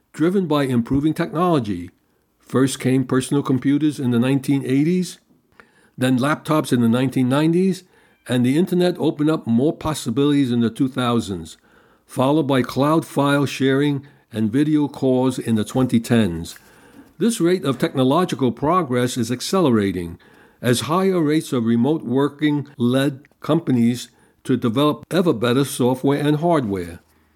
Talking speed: 130 wpm